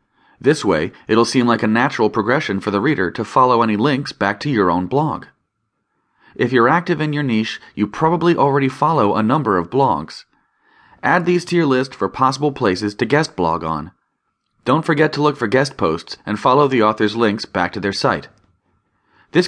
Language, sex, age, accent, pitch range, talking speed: English, male, 30-49, American, 110-160 Hz, 195 wpm